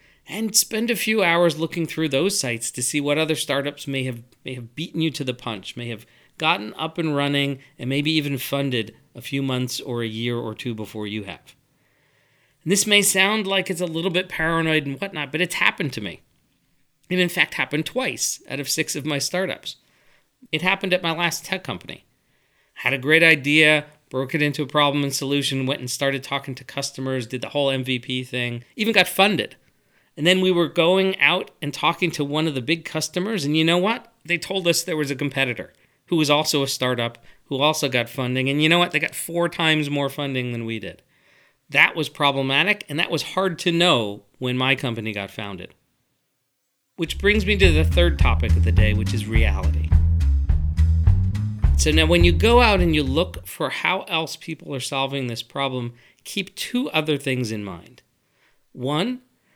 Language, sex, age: English, male, 40-59